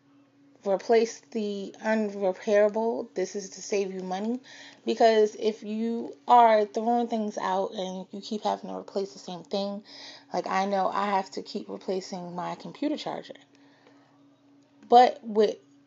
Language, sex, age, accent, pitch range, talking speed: English, female, 30-49, American, 140-220 Hz, 145 wpm